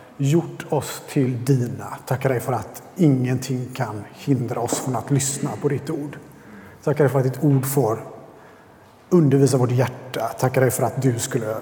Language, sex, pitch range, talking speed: Swedish, male, 125-150 Hz, 175 wpm